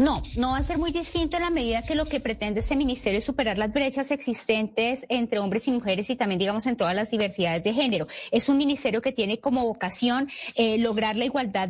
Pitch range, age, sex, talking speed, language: 200-240 Hz, 30-49, female, 230 wpm, Spanish